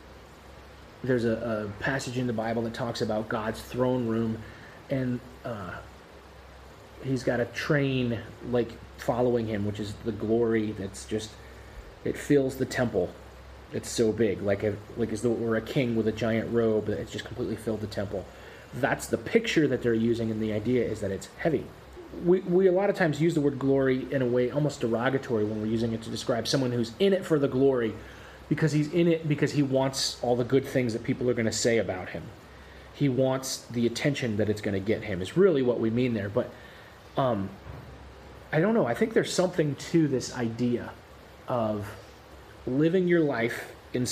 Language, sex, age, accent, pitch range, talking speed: English, male, 30-49, American, 105-135 Hz, 200 wpm